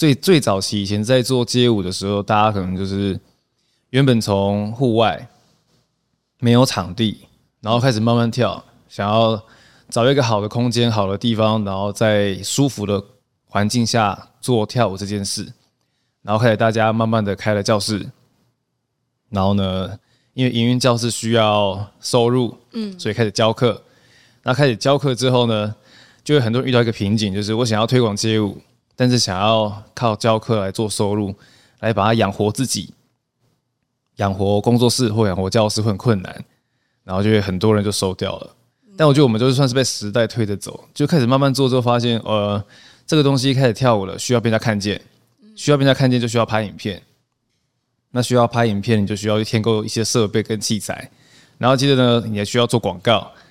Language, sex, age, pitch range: English, male, 20-39, 105-125 Hz